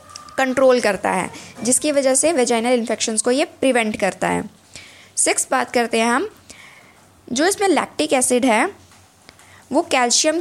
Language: Hindi